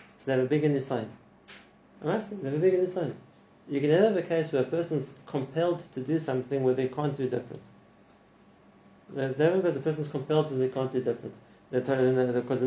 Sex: male